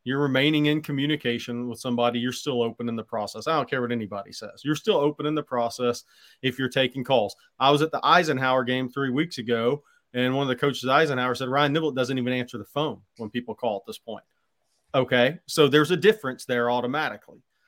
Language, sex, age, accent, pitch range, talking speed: English, male, 30-49, American, 125-150 Hz, 215 wpm